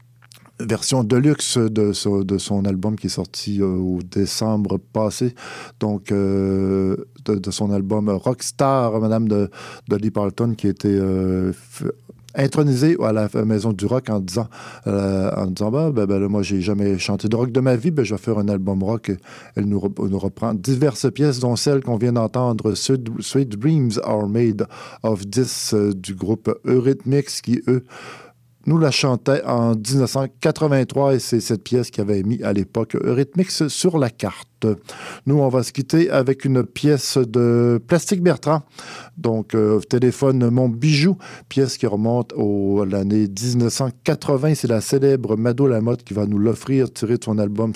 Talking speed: 175 wpm